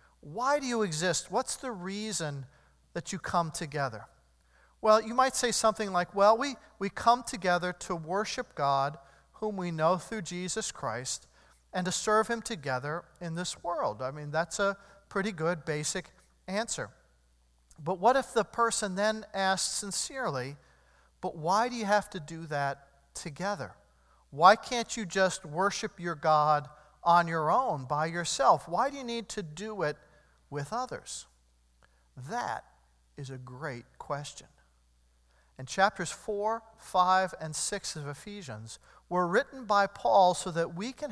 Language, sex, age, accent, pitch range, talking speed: English, male, 40-59, American, 145-210 Hz, 155 wpm